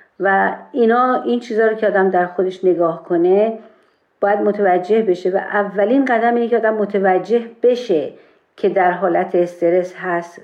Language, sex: Persian, female